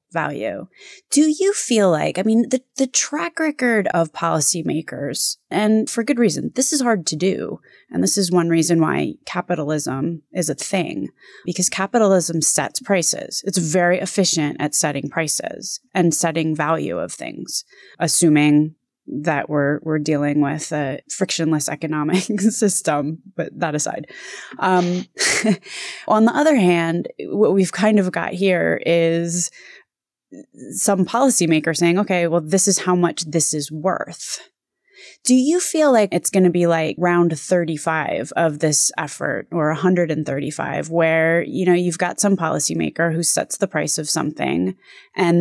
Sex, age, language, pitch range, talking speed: female, 20-39, English, 160-195 Hz, 150 wpm